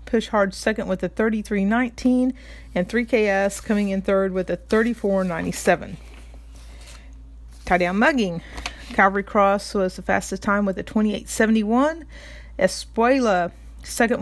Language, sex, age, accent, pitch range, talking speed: English, female, 40-59, American, 185-235 Hz, 115 wpm